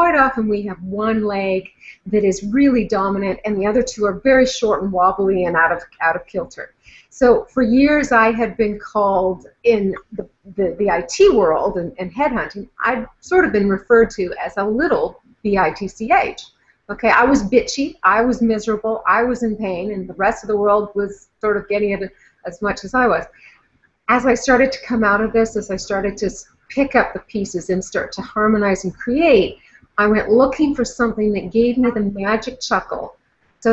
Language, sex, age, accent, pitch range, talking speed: English, female, 40-59, American, 195-245 Hz, 200 wpm